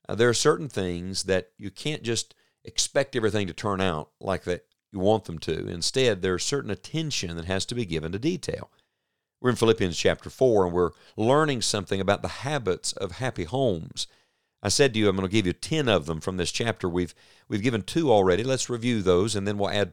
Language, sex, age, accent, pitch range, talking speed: English, male, 50-69, American, 90-120 Hz, 220 wpm